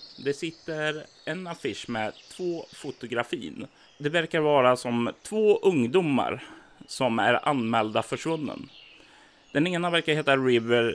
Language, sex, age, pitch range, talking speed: Swedish, male, 30-49, 115-145 Hz, 120 wpm